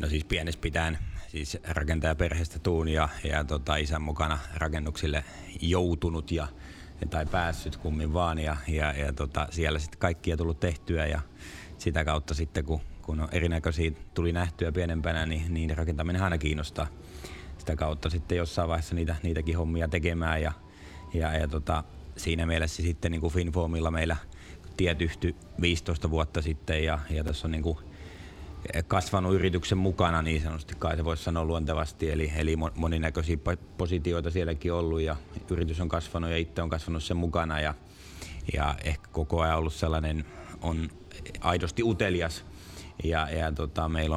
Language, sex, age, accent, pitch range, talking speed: Finnish, male, 30-49, native, 80-85 Hz, 150 wpm